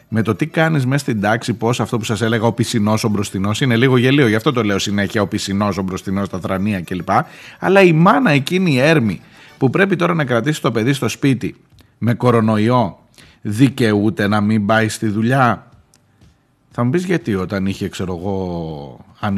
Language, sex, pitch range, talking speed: Greek, male, 100-165 Hz, 195 wpm